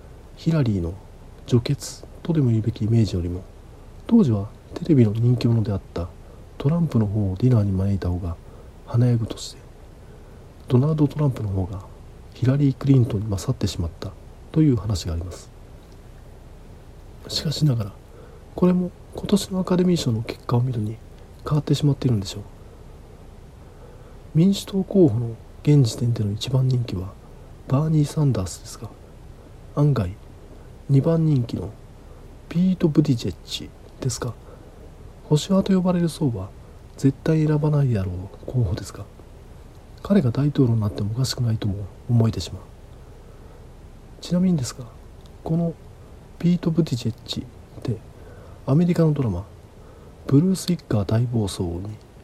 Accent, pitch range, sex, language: native, 100-140 Hz, male, Japanese